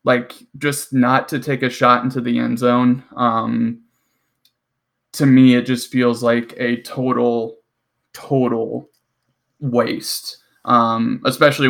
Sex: male